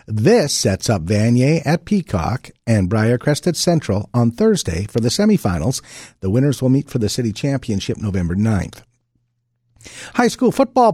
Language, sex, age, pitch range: English, male, 50-69, 110-165 Hz